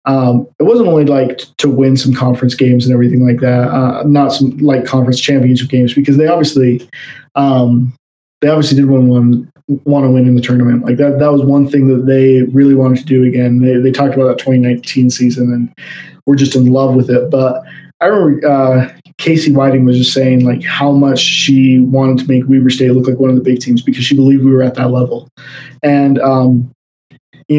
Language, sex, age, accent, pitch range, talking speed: English, male, 20-39, American, 125-140 Hz, 215 wpm